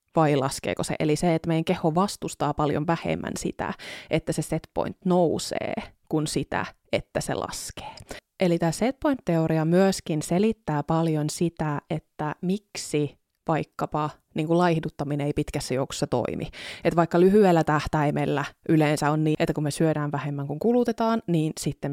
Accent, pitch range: native, 155-180 Hz